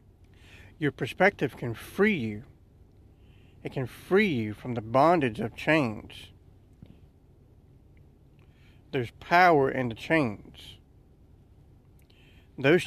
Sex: male